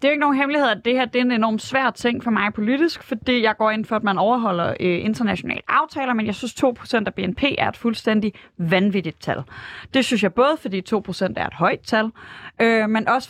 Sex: female